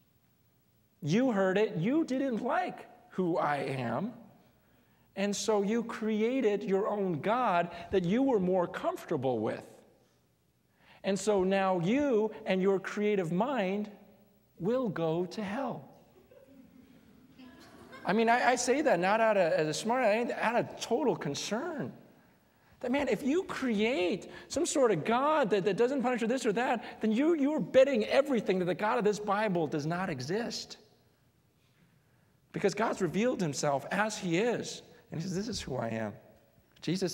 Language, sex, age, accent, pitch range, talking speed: English, male, 40-59, American, 155-230 Hz, 155 wpm